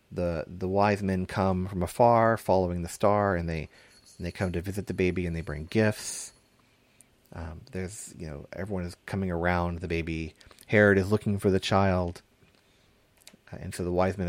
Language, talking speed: English, 185 wpm